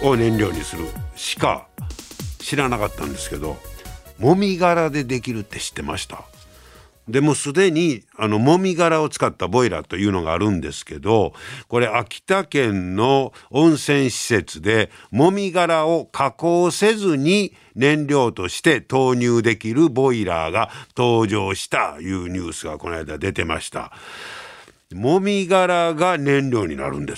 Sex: male